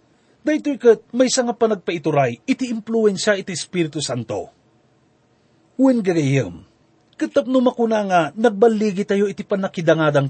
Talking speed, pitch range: 110 wpm, 160-235 Hz